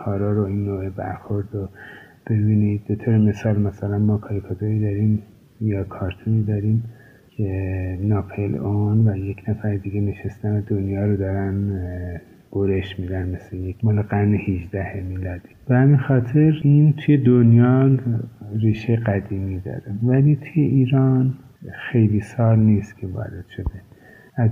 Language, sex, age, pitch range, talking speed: Persian, male, 50-69, 100-115 Hz, 135 wpm